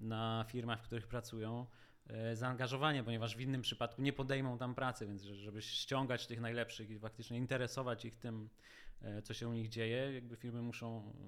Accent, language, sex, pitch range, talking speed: native, Polish, male, 110-125 Hz, 170 wpm